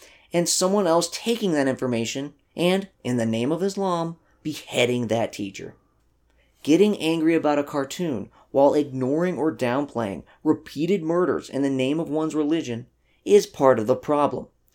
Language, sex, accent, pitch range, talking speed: English, male, American, 130-180 Hz, 150 wpm